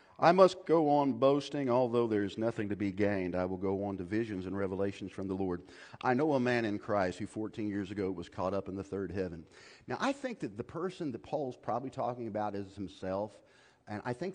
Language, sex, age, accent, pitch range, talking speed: English, male, 40-59, American, 95-125 Hz, 235 wpm